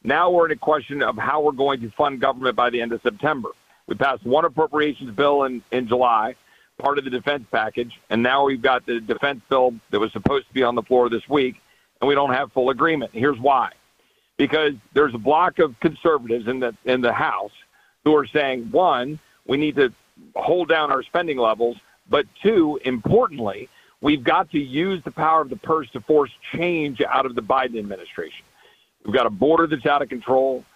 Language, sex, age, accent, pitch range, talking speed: English, male, 50-69, American, 125-150 Hz, 205 wpm